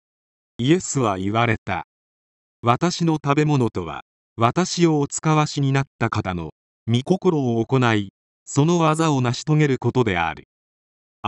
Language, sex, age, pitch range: Japanese, male, 40-59, 100-150 Hz